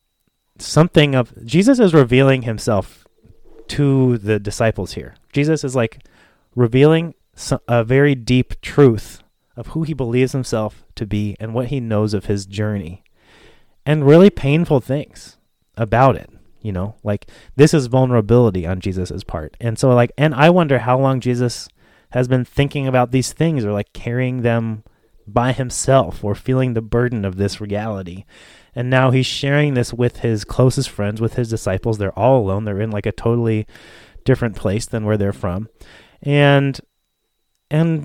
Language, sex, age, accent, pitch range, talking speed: English, male, 30-49, American, 105-135 Hz, 160 wpm